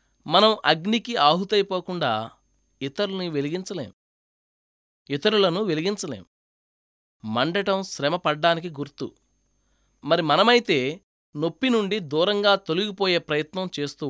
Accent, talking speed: native, 75 wpm